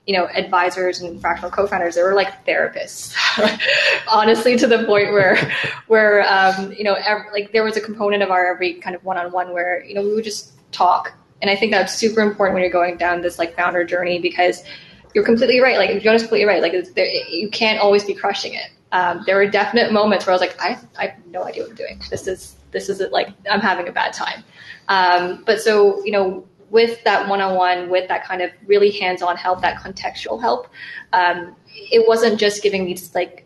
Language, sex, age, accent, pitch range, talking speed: English, female, 10-29, American, 180-210 Hz, 220 wpm